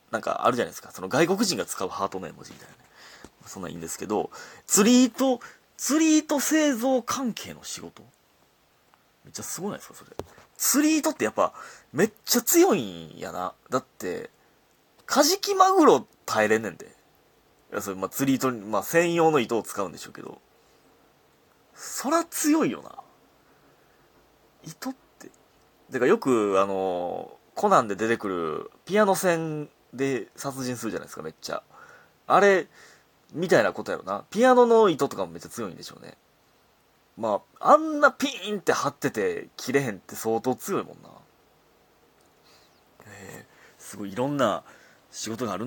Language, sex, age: Japanese, male, 30-49